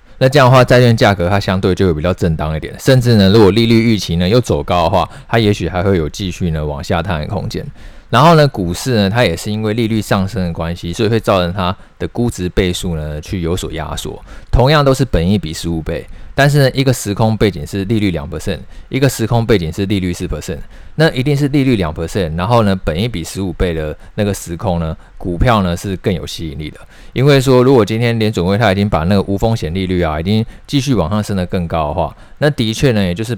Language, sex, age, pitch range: Chinese, male, 20-39, 85-115 Hz